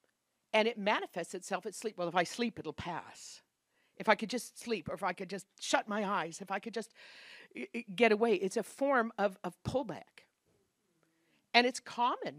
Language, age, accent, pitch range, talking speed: English, 50-69, American, 205-275 Hz, 195 wpm